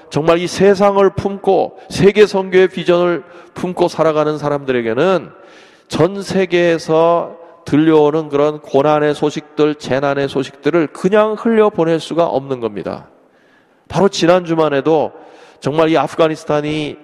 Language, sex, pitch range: Korean, male, 145-205 Hz